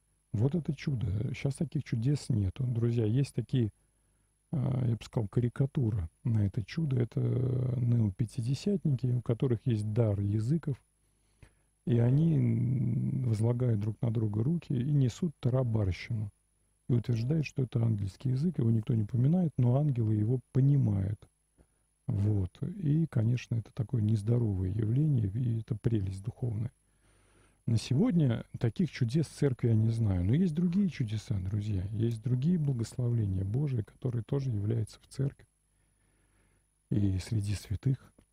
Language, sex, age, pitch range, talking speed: Russian, male, 40-59, 110-135 Hz, 135 wpm